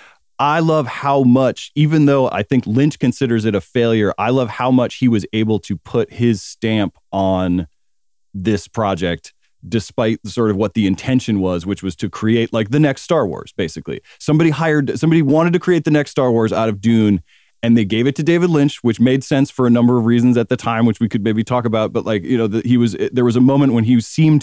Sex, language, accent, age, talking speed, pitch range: male, English, American, 30-49, 230 wpm, 100-130 Hz